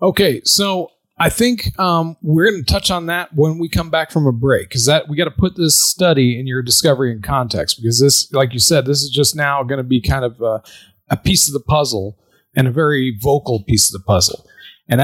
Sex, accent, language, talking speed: male, American, English, 235 wpm